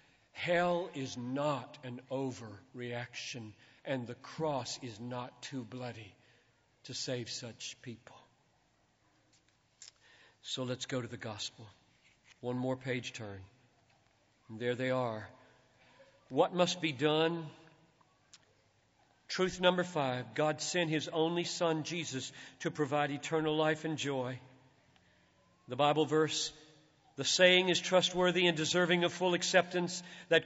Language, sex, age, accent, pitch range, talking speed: English, male, 50-69, American, 130-200 Hz, 120 wpm